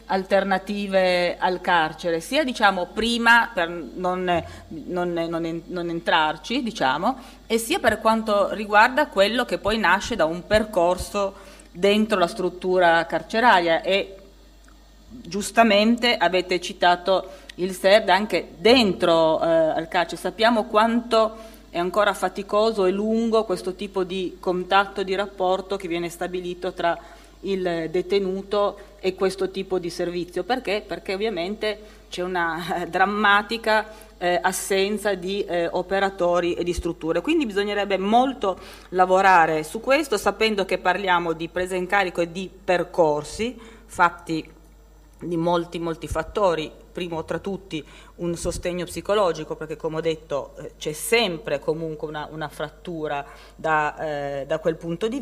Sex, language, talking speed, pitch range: female, Italian, 130 wpm, 170-210 Hz